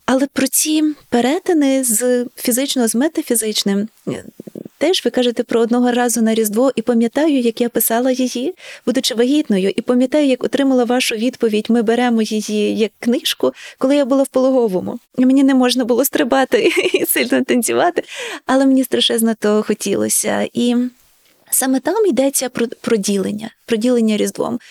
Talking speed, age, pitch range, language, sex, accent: 150 wpm, 20-39, 230-270 Hz, Ukrainian, female, native